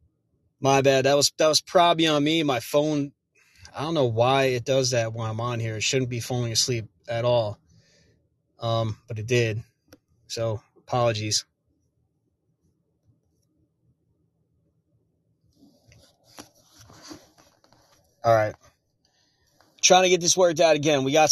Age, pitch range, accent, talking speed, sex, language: 30-49, 115-150 Hz, American, 130 wpm, male, English